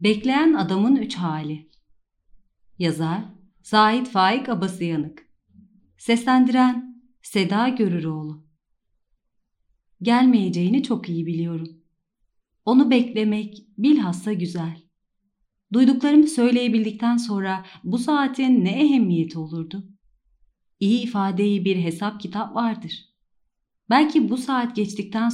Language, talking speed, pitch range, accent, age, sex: Turkish, 90 wpm, 170-235 Hz, native, 40-59, female